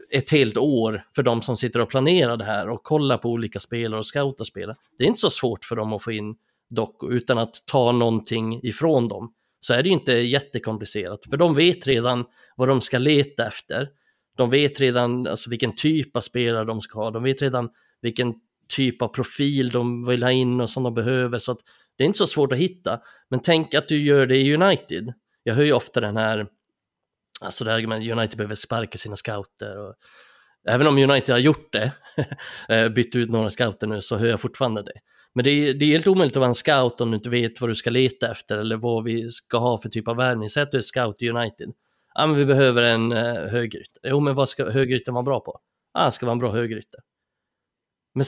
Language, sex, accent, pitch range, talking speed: Swedish, male, native, 115-135 Hz, 220 wpm